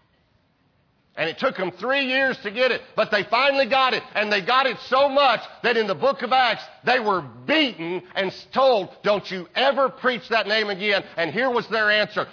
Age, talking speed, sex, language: 50-69, 210 wpm, male, English